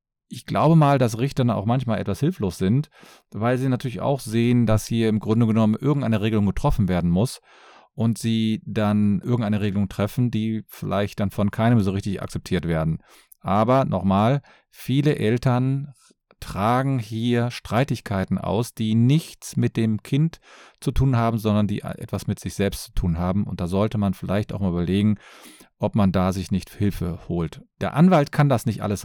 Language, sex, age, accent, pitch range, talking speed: German, male, 40-59, German, 100-135 Hz, 180 wpm